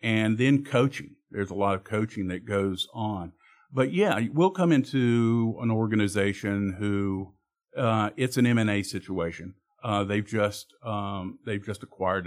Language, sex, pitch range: English, male, 95-115 Hz